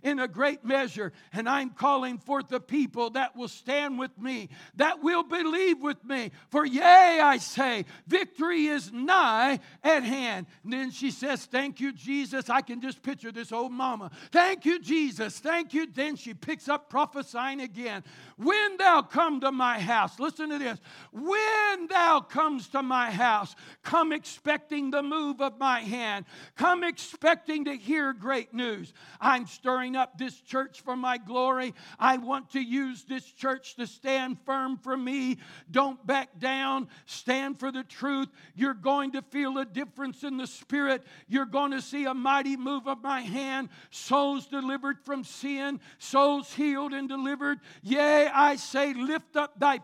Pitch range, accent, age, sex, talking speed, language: 255-290 Hz, American, 60-79, male, 170 wpm, English